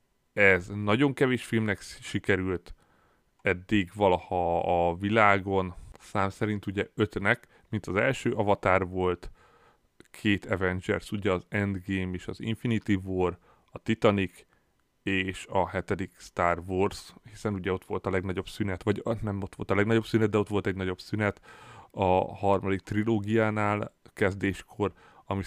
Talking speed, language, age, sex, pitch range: 140 wpm, Hungarian, 30-49, male, 95-105 Hz